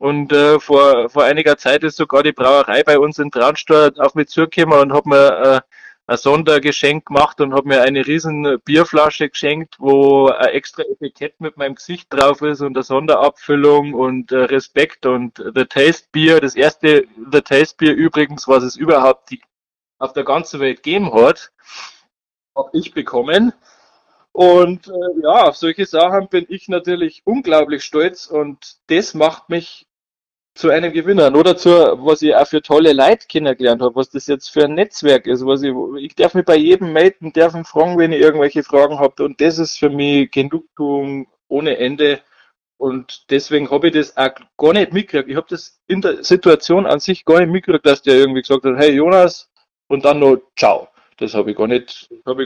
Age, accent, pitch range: 20-39, German, 135-160 Hz